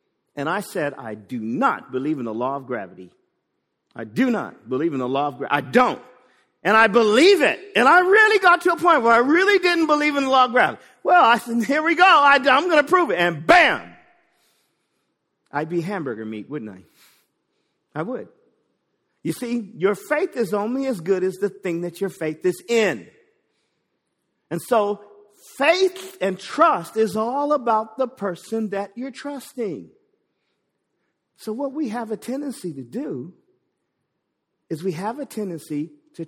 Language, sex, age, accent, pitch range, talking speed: English, male, 50-69, American, 165-260 Hz, 180 wpm